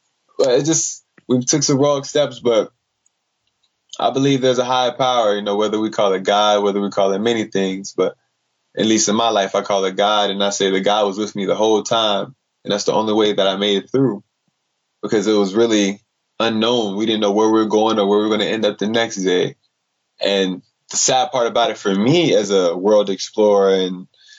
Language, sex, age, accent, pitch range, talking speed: English, male, 20-39, American, 100-120 Hz, 230 wpm